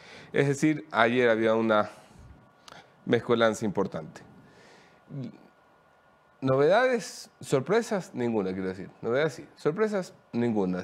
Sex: male